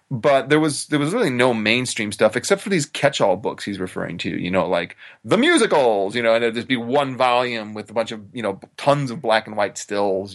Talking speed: 245 wpm